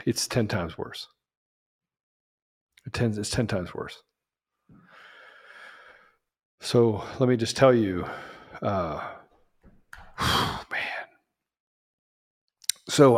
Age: 50-69